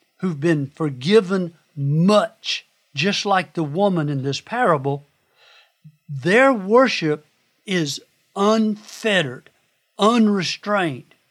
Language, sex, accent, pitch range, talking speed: English, male, American, 155-205 Hz, 85 wpm